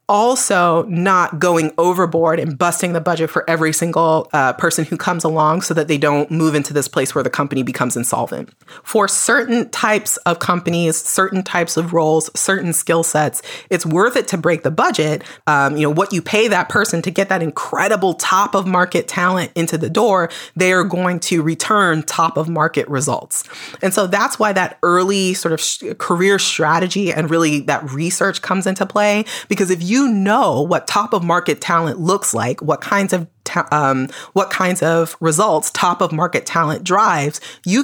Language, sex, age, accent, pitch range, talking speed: English, female, 30-49, American, 160-190 Hz, 190 wpm